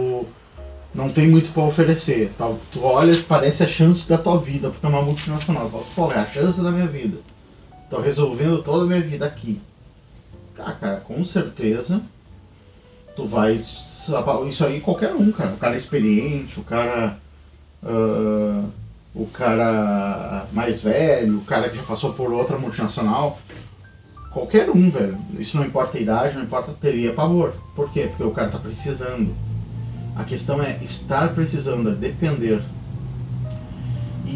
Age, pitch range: 30-49, 100-150 Hz